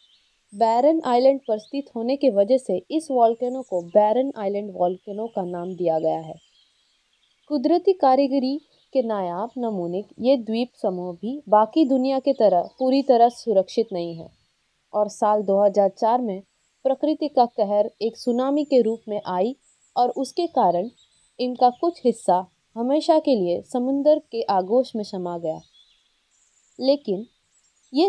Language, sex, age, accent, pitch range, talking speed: Hindi, female, 20-39, native, 200-270 Hz, 145 wpm